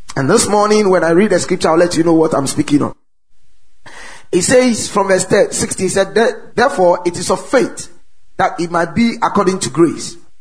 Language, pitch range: English, 180-245 Hz